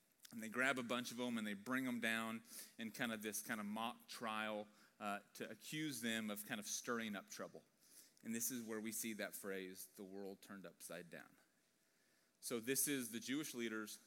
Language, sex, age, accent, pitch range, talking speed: English, male, 30-49, American, 115-145 Hz, 210 wpm